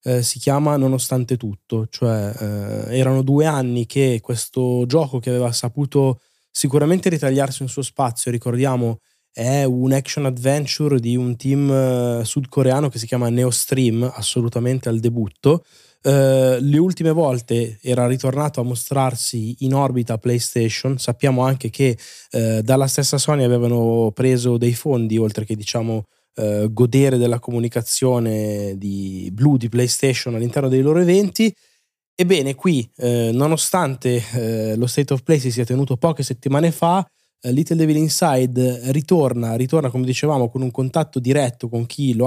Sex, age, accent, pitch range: male, 20-39, native, 120-140 Hz